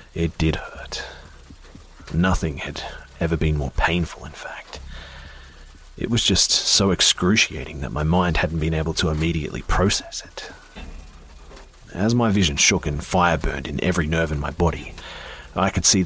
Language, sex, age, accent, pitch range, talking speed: English, male, 40-59, Australian, 70-85 Hz, 155 wpm